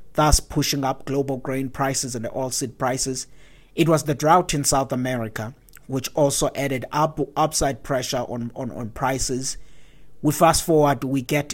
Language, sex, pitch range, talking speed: English, male, 130-155 Hz, 165 wpm